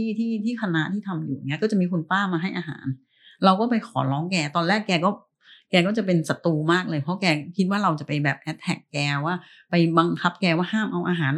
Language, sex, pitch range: Thai, female, 155-195 Hz